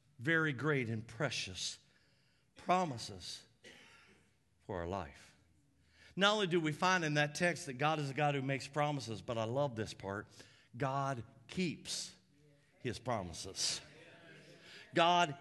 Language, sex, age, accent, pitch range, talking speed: English, male, 50-69, American, 145-195 Hz, 130 wpm